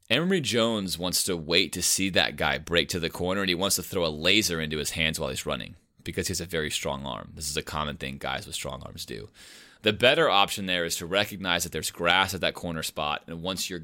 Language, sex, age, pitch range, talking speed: English, male, 30-49, 80-95 Hz, 260 wpm